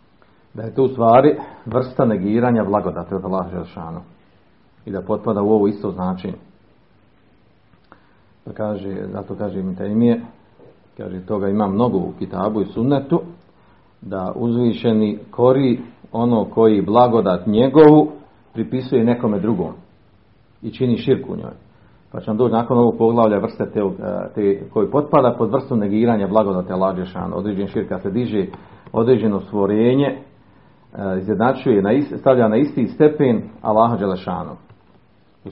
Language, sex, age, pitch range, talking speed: Croatian, male, 50-69, 95-115 Hz, 130 wpm